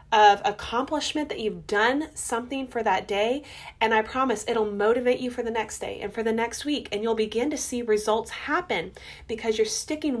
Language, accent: English, American